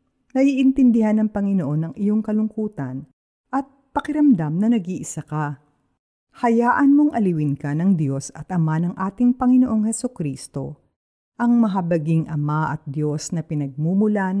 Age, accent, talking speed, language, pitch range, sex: 50-69, native, 130 wpm, Filipino, 155-220 Hz, female